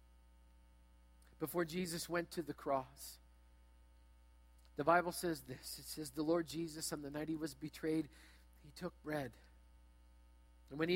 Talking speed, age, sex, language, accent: 150 wpm, 50-69, male, English, American